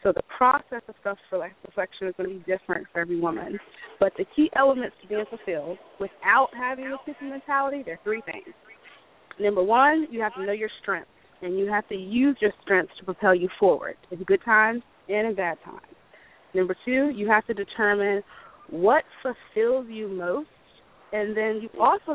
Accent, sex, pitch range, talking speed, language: American, female, 190-240 Hz, 185 wpm, English